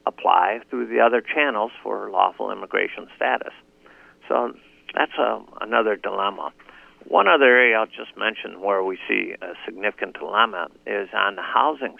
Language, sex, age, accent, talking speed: English, male, 50-69, American, 150 wpm